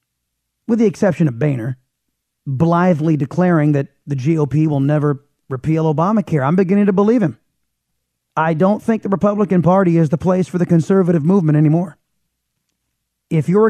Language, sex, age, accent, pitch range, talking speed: English, male, 30-49, American, 145-195 Hz, 155 wpm